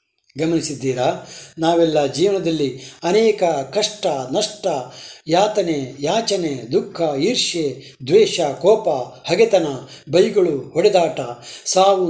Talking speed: 80 wpm